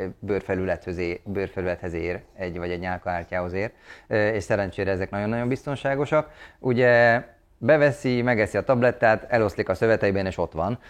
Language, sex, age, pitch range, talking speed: Hungarian, male, 30-49, 90-105 Hz, 125 wpm